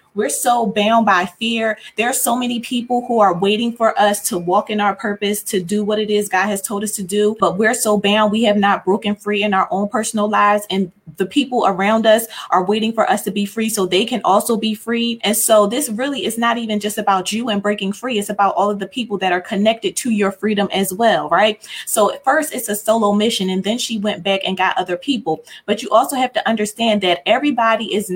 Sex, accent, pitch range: female, American, 195-225 Hz